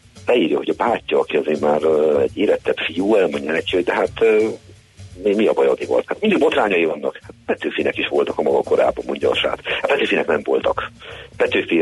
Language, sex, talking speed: Hungarian, male, 195 wpm